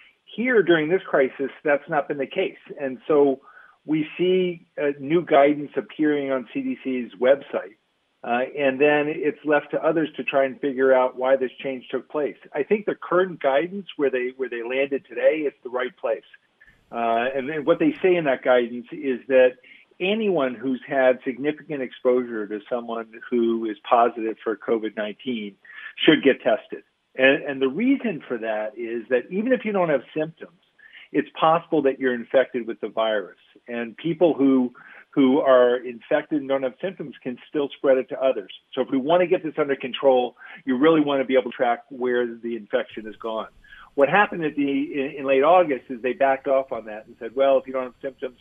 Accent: American